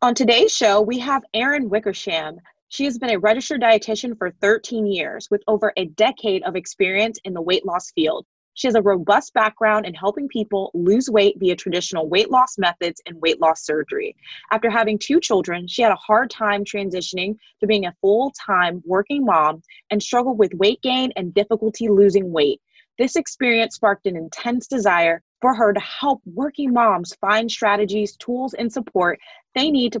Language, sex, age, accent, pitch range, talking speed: English, female, 20-39, American, 185-245 Hz, 180 wpm